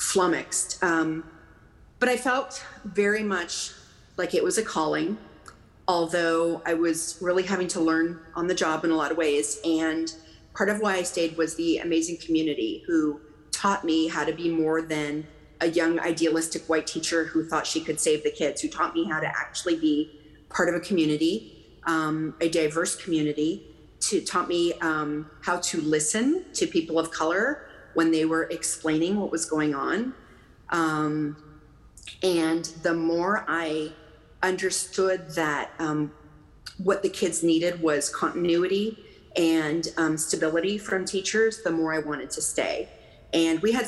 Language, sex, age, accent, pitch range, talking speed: English, female, 30-49, American, 160-185 Hz, 165 wpm